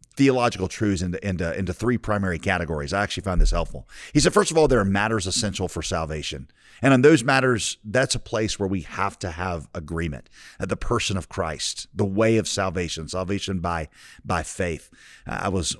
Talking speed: 200 wpm